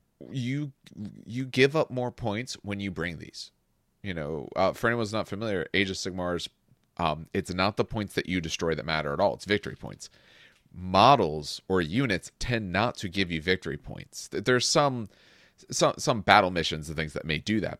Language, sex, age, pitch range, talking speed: English, male, 30-49, 85-115 Hz, 195 wpm